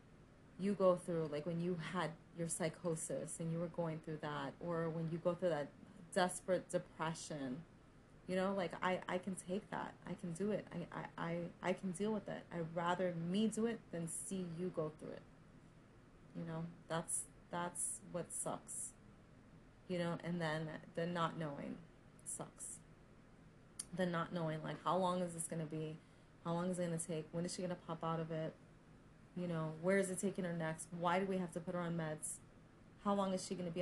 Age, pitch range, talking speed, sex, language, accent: 30-49, 160-180 Hz, 205 wpm, female, English, American